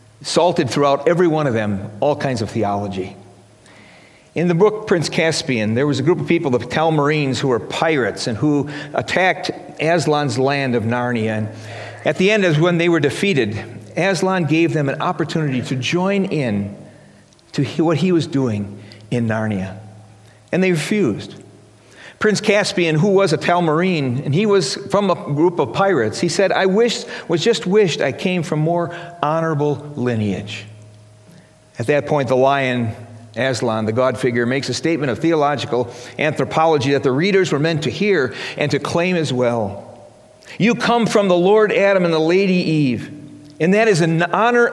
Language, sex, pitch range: English, male, 120-180 Hz